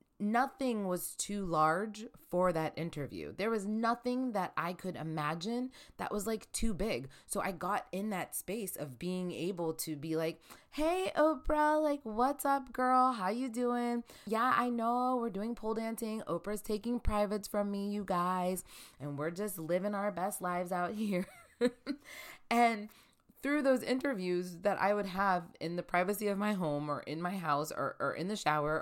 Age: 20-39